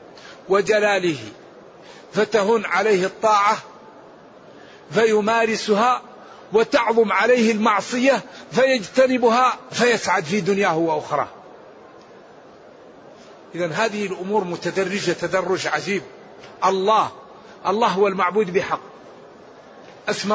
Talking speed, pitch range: 75 wpm, 190-225 Hz